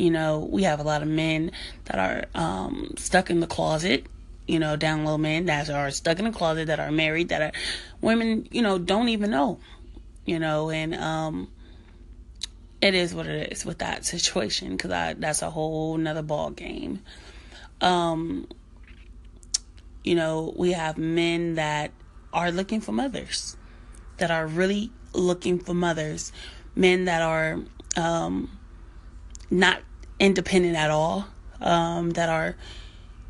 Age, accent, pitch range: 30-49, American, 135-180 Hz